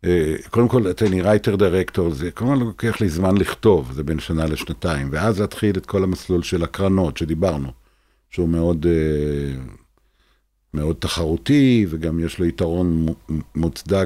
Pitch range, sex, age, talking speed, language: 85-105 Hz, male, 50-69, 145 wpm, Hebrew